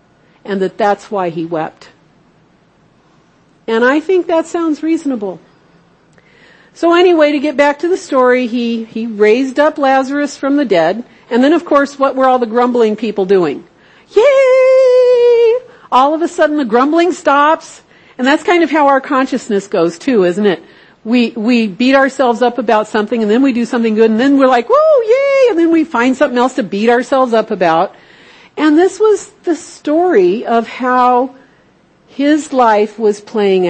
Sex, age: female, 50-69